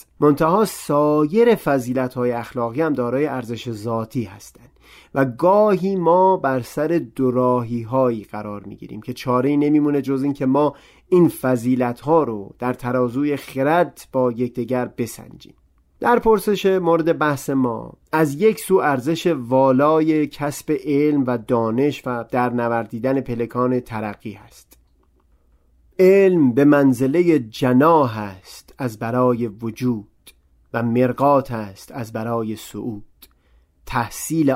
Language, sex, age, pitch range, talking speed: Persian, male, 30-49, 115-150 Hz, 120 wpm